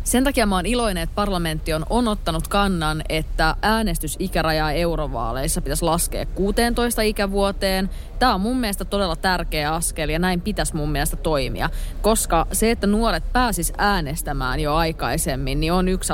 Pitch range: 160-205 Hz